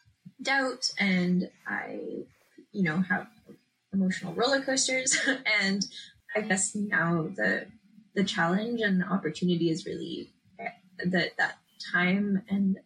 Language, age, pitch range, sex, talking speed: English, 10-29, 180-210 Hz, female, 115 wpm